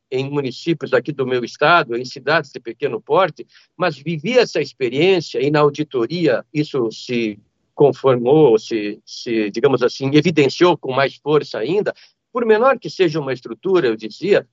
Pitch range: 140-195 Hz